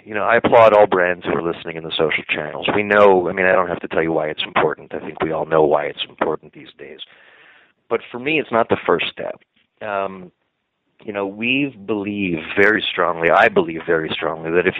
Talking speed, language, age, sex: 230 wpm, English, 40-59, male